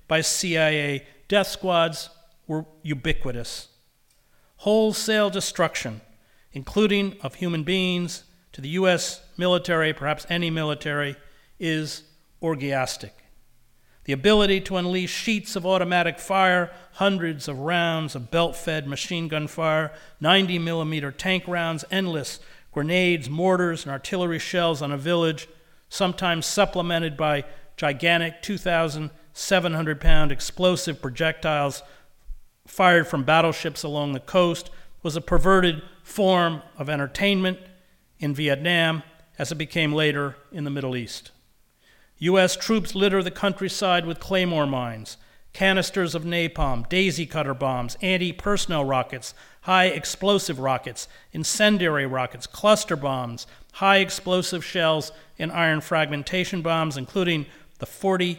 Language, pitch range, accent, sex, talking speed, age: English, 145-185 Hz, American, male, 115 wpm, 50-69